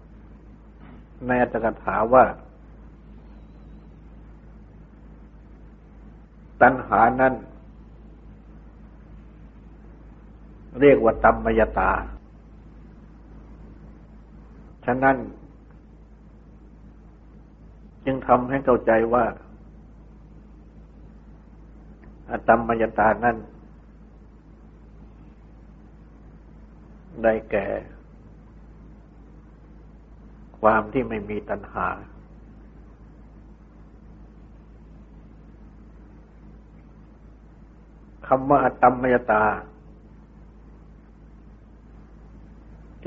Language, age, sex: Thai, 60-79, male